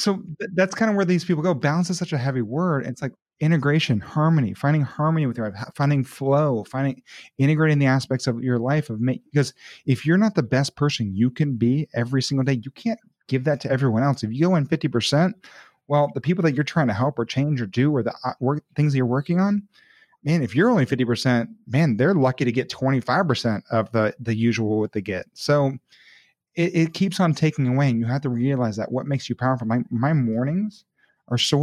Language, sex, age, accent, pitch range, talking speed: English, male, 30-49, American, 120-155 Hz, 225 wpm